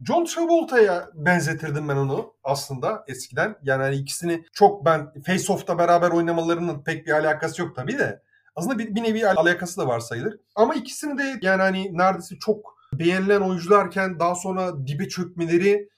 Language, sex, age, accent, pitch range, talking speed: Turkish, male, 30-49, native, 150-220 Hz, 160 wpm